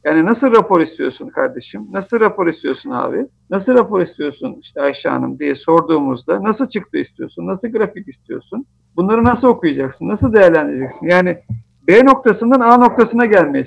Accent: native